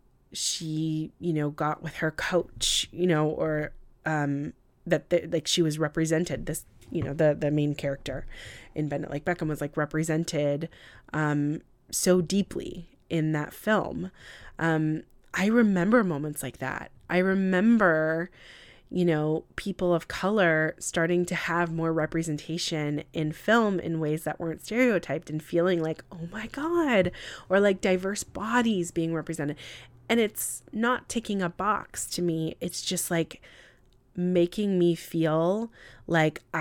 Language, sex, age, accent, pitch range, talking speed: English, female, 20-39, American, 155-185 Hz, 145 wpm